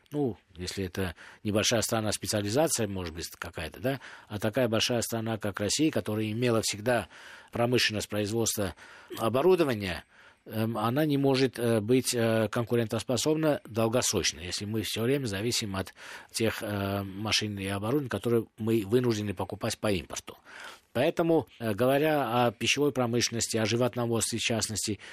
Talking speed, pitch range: 125 wpm, 105-125 Hz